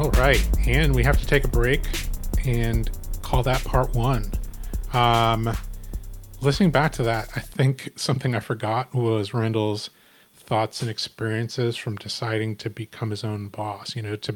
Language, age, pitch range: English, 30-49, 110-125 Hz